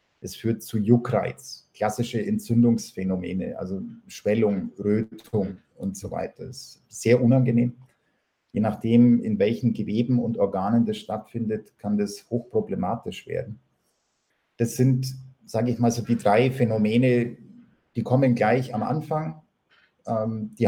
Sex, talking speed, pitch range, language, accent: male, 130 wpm, 110-125 Hz, German, German